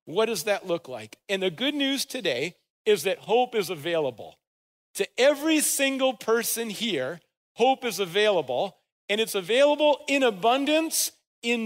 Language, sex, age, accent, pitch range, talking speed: English, male, 50-69, American, 195-255 Hz, 150 wpm